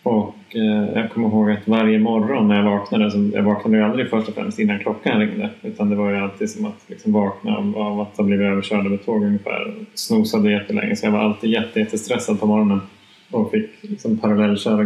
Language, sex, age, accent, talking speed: Swedish, male, 20-39, Norwegian, 220 wpm